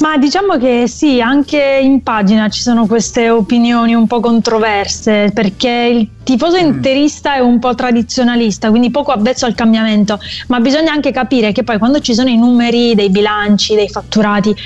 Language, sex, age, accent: Italian, female, 20-39, native